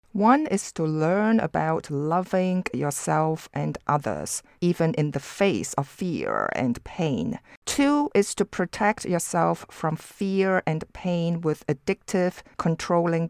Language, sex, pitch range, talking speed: English, female, 150-195 Hz, 130 wpm